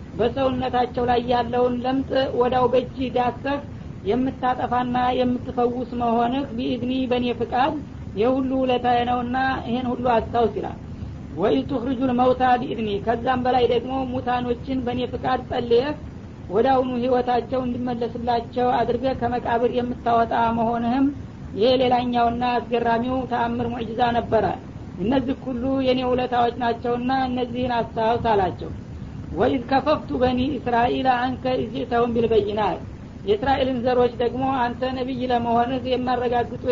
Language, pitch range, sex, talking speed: Amharic, 240-255 Hz, female, 100 wpm